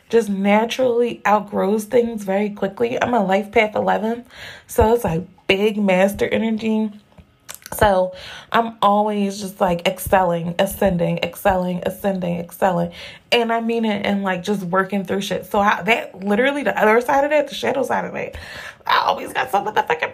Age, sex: 20-39, female